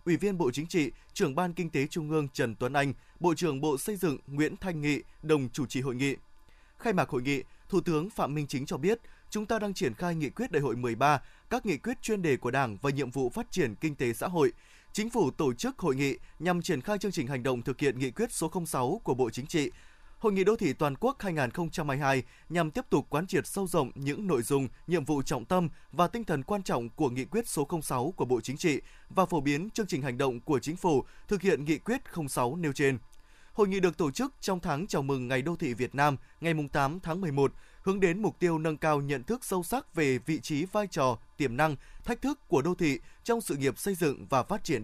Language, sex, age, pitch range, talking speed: Vietnamese, male, 20-39, 140-190 Hz, 250 wpm